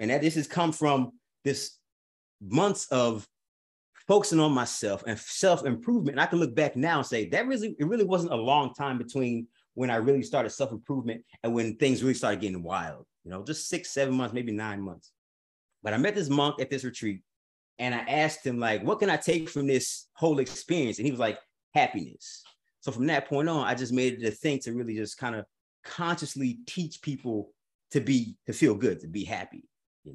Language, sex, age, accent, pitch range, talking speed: English, male, 30-49, American, 115-165 Hz, 210 wpm